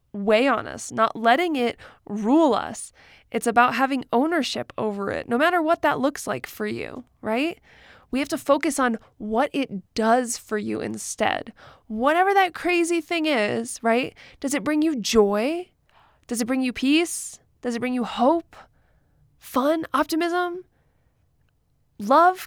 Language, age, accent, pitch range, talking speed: English, 20-39, American, 235-315 Hz, 155 wpm